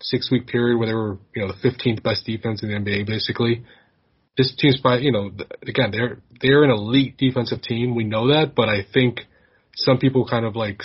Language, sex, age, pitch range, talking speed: English, male, 20-39, 105-130 Hz, 210 wpm